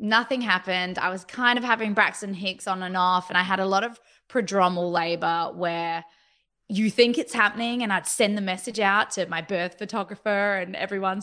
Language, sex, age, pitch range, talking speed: English, female, 20-39, 180-240 Hz, 200 wpm